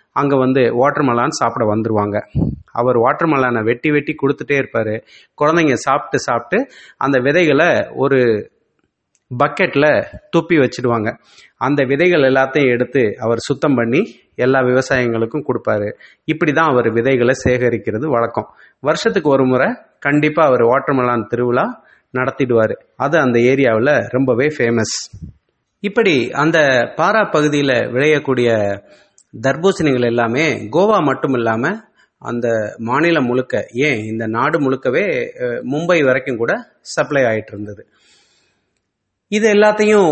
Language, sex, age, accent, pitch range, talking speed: English, male, 30-49, Indian, 120-150 Hz, 110 wpm